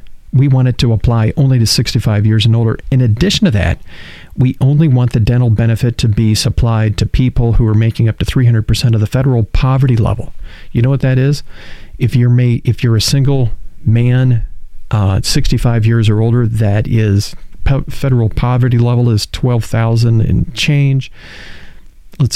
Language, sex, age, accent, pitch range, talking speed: English, male, 40-59, American, 110-125 Hz, 175 wpm